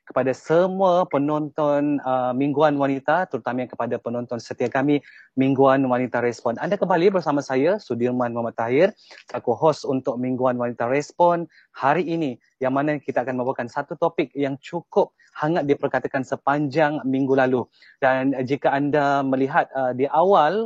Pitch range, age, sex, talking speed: 125-145 Hz, 30-49, male, 145 wpm